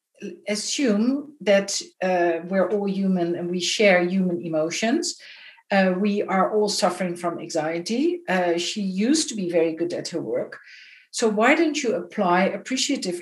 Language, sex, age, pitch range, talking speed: English, female, 60-79, 185-235 Hz, 155 wpm